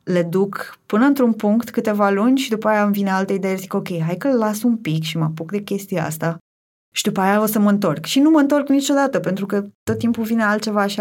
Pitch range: 165-195 Hz